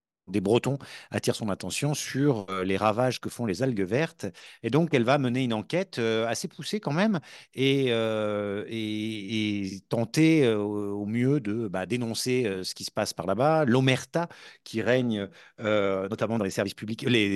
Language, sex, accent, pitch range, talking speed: French, male, French, 100-135 Hz, 175 wpm